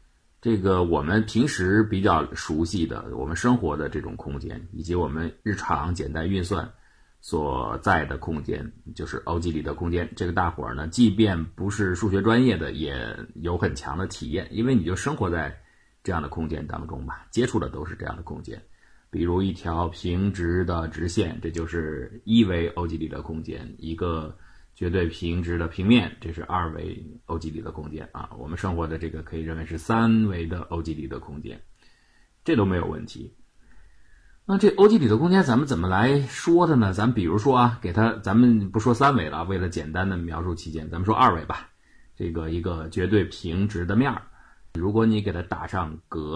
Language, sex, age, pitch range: Chinese, male, 30-49, 80-110 Hz